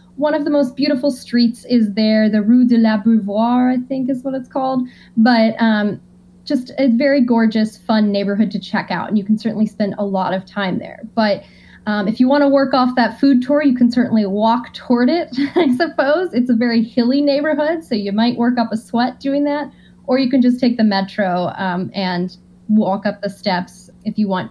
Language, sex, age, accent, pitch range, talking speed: English, female, 10-29, American, 200-250 Hz, 220 wpm